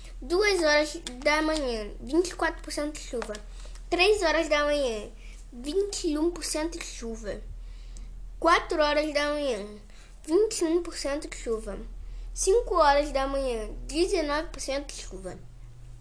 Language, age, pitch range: Portuguese, 10-29, 250-330 Hz